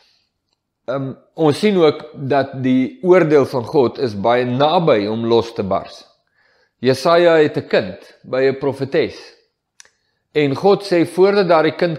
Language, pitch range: English, 130-175 Hz